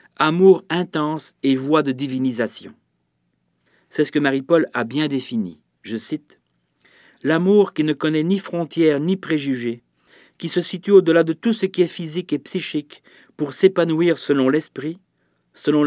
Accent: French